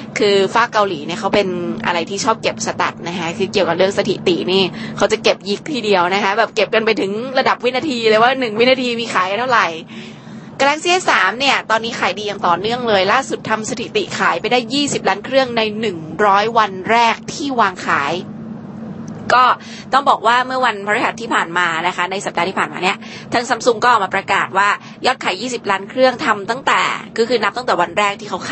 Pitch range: 195-240 Hz